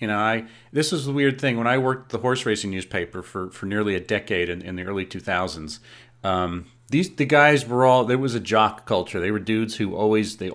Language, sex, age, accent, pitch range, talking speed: English, male, 40-59, American, 105-135 Hz, 240 wpm